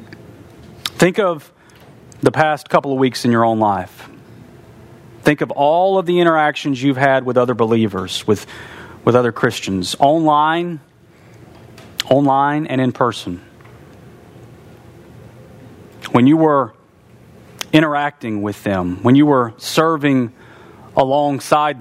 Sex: male